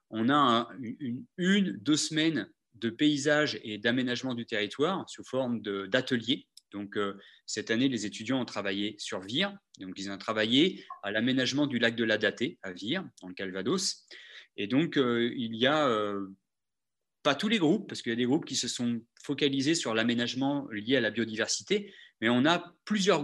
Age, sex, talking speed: 30-49, male, 185 wpm